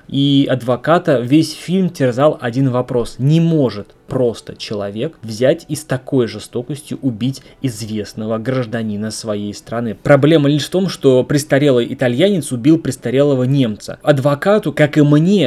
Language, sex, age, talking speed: Russian, male, 20-39, 135 wpm